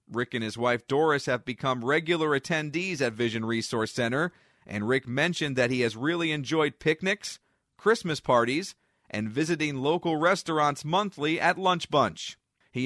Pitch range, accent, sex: 125-160 Hz, American, male